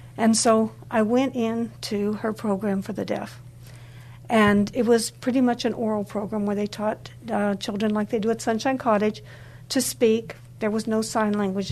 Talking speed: 190 wpm